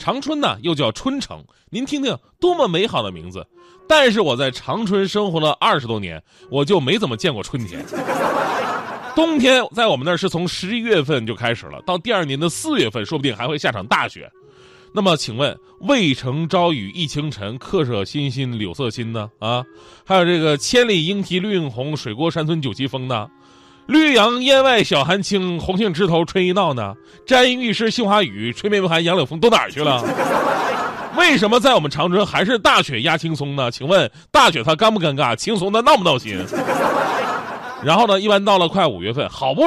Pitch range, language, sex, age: 140-230 Hz, Chinese, male, 20-39